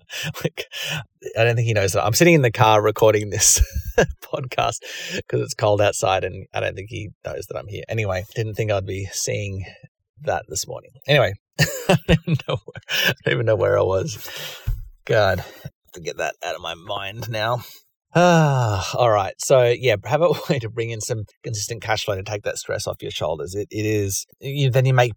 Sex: male